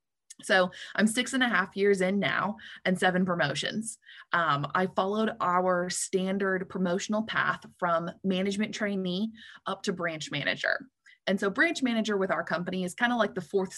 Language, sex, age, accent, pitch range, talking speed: English, female, 20-39, American, 170-205 Hz, 170 wpm